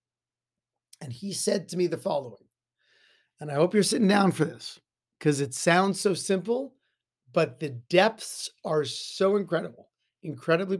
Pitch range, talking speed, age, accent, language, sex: 150-195 Hz, 150 wpm, 40-59, American, English, male